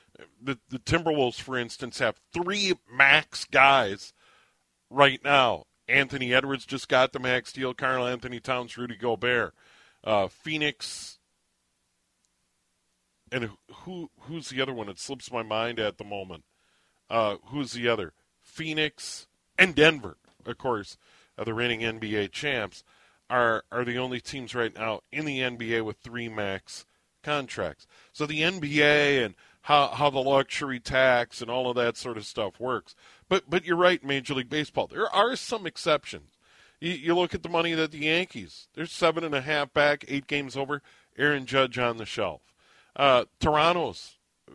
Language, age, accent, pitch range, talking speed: English, 40-59, American, 120-150 Hz, 160 wpm